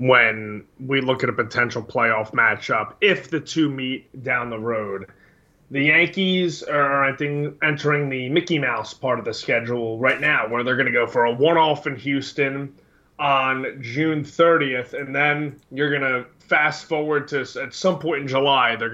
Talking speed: 180 wpm